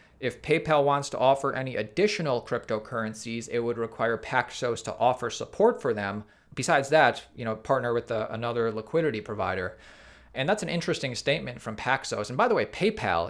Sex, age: male, 30-49